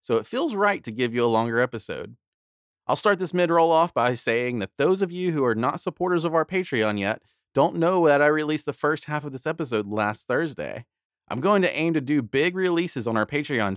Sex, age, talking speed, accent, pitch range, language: male, 30-49, 230 wpm, American, 110-155 Hz, English